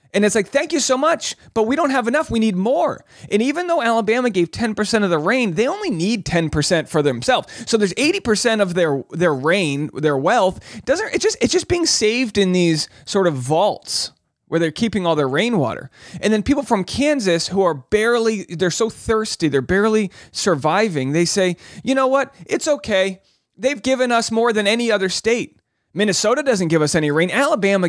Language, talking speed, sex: English, 200 wpm, male